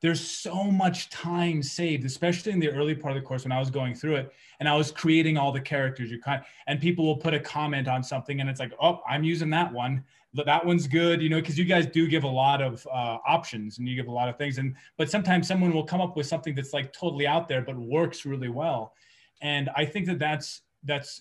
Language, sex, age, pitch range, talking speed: English, male, 30-49, 135-165 Hz, 255 wpm